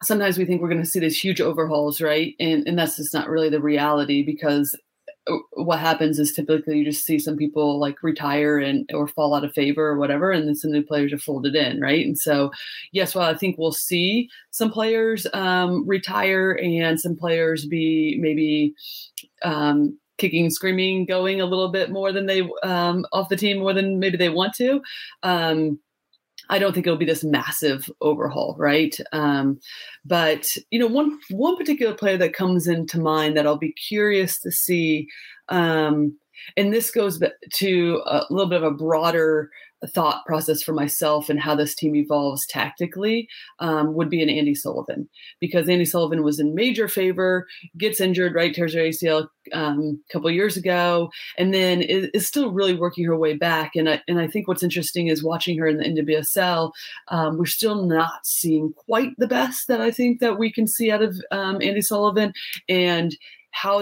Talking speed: 190 wpm